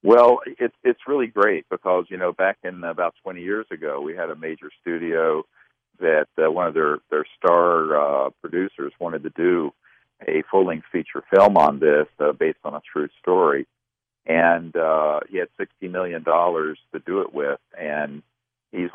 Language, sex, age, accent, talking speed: English, male, 50-69, American, 170 wpm